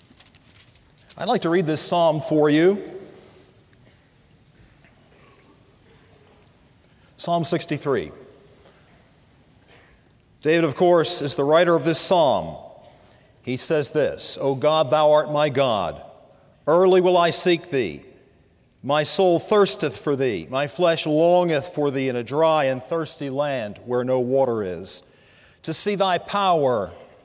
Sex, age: male, 50-69